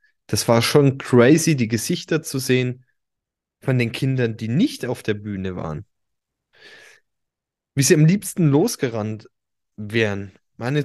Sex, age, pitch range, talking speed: male, 20-39, 110-160 Hz, 135 wpm